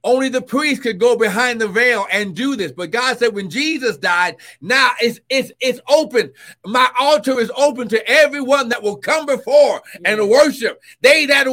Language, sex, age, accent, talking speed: English, male, 50-69, American, 185 wpm